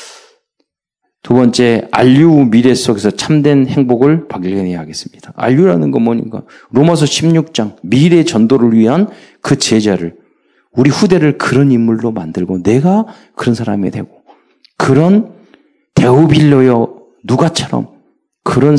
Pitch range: 105-150 Hz